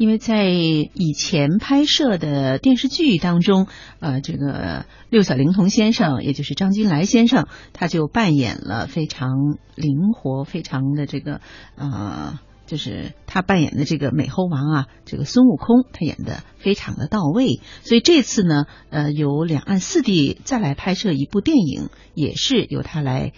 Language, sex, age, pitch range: Chinese, female, 50-69, 150-235 Hz